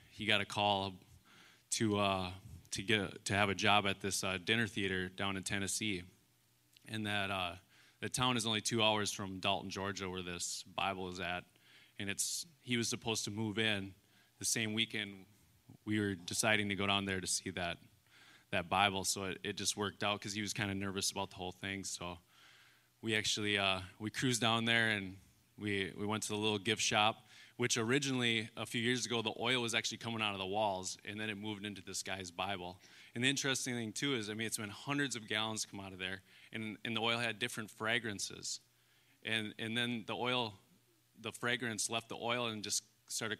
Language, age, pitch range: English, 20-39, 95-115 Hz